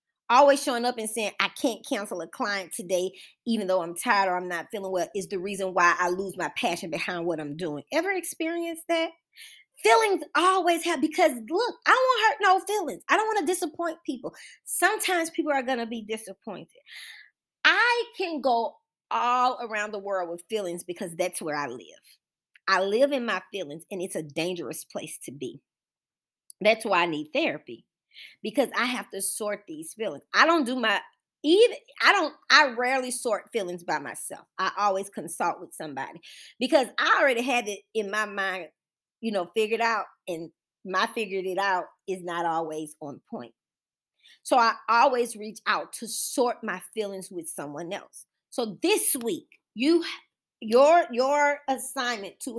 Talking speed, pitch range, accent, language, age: 180 wpm, 190-300 Hz, American, English, 20-39